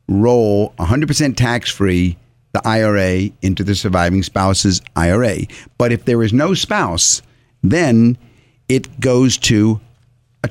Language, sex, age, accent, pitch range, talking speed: English, male, 50-69, American, 100-130 Hz, 120 wpm